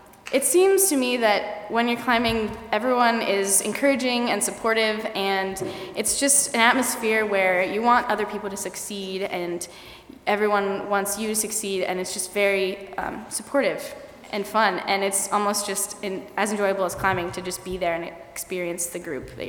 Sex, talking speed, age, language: female, 170 wpm, 10-29, English